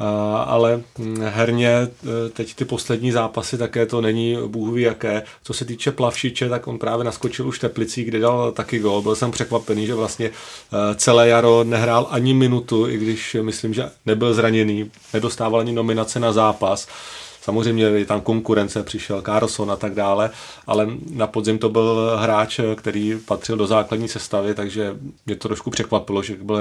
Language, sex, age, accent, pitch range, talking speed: Czech, male, 30-49, native, 105-115 Hz, 160 wpm